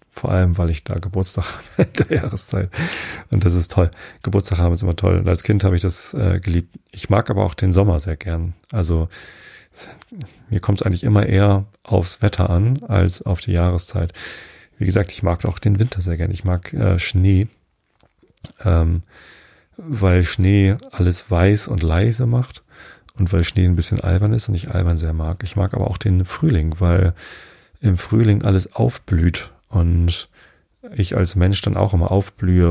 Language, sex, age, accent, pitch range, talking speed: German, male, 40-59, German, 90-105 Hz, 185 wpm